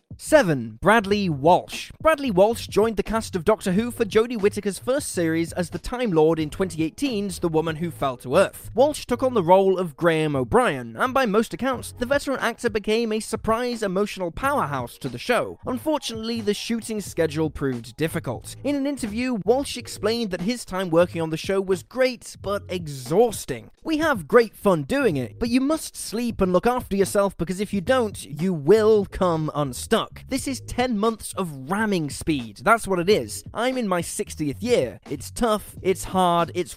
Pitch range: 165-235 Hz